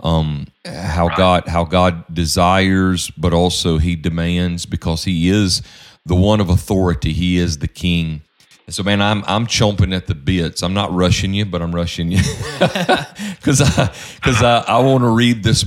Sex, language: male, English